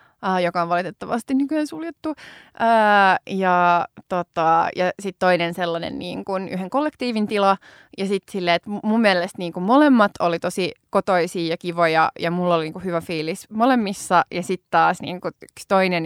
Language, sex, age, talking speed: Finnish, female, 20-39, 160 wpm